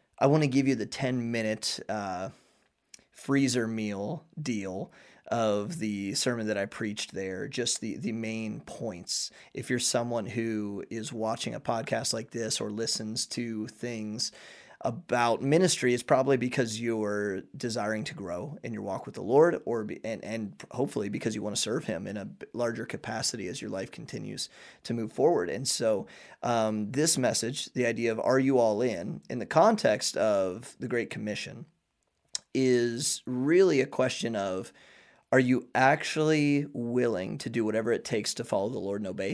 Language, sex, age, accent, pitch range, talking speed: English, male, 30-49, American, 110-130 Hz, 170 wpm